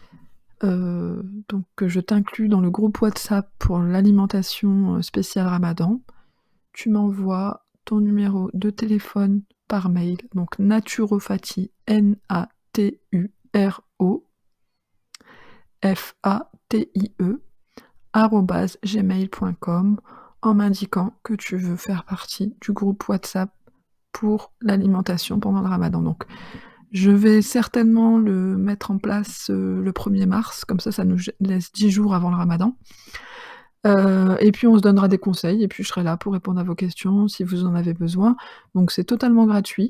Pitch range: 185-210 Hz